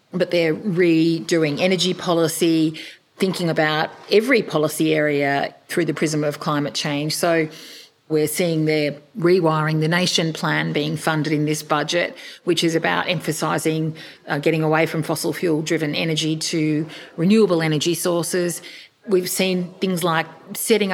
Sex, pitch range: female, 155-180 Hz